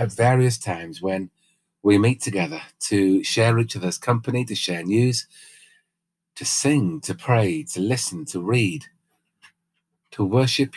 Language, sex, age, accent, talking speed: English, male, 40-59, British, 140 wpm